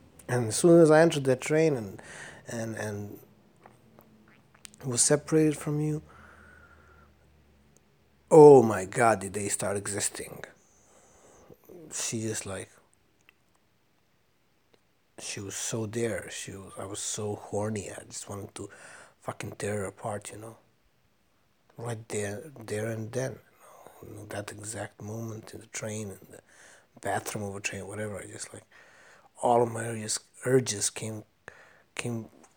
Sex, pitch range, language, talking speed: male, 105-125 Hz, English, 140 wpm